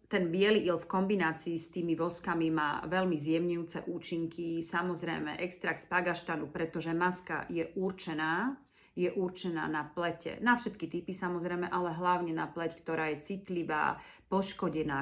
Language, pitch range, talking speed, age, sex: Slovak, 165-185 Hz, 145 wpm, 40-59, female